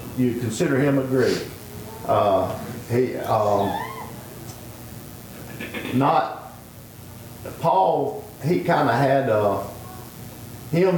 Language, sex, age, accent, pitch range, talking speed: English, male, 50-69, American, 115-135 Hz, 85 wpm